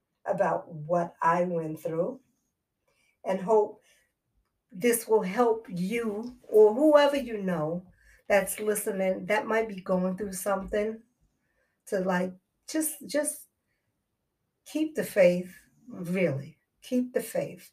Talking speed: 115 wpm